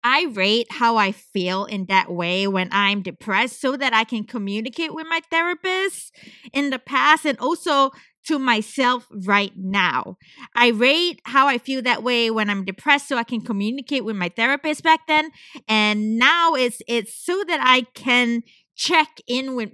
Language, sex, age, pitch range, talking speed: English, female, 20-39, 205-270 Hz, 175 wpm